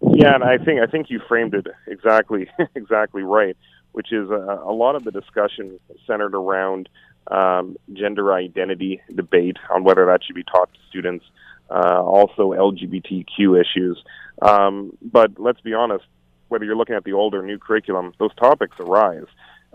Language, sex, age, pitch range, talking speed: English, male, 30-49, 95-105 Hz, 165 wpm